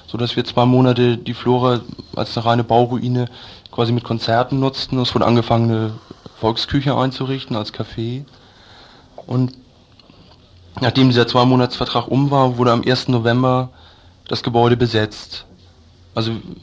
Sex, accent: male, German